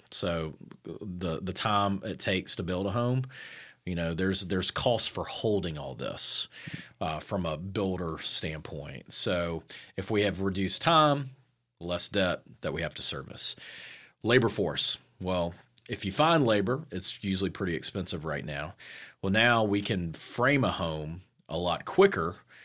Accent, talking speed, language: American, 160 wpm, English